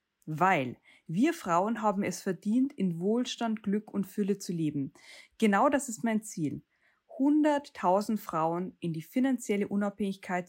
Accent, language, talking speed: German, German, 135 wpm